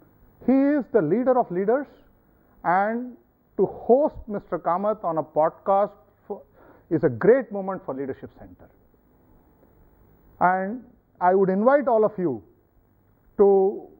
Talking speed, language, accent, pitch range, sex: 125 wpm, English, Indian, 175-250 Hz, male